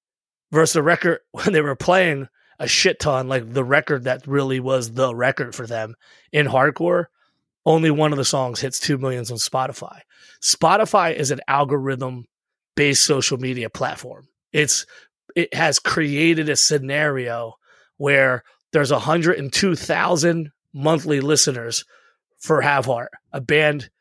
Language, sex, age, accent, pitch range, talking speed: English, male, 30-49, American, 130-155 Hz, 135 wpm